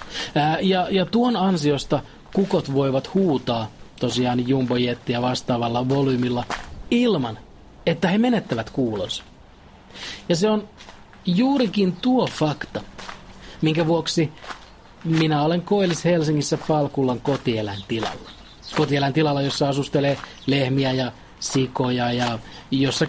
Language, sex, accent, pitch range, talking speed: Finnish, male, native, 125-160 Hz, 105 wpm